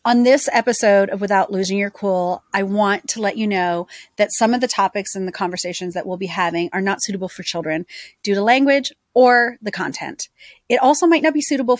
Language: English